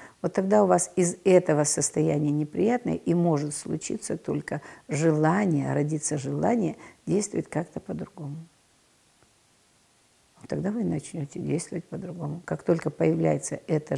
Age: 50-69